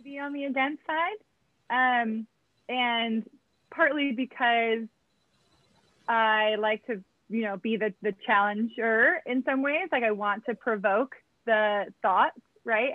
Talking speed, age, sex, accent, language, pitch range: 135 wpm, 20-39, female, American, English, 215-260 Hz